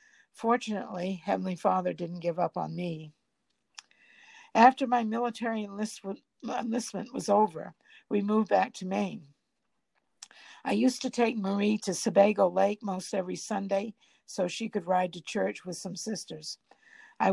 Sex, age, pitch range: female, 60-79, 185-230 Hz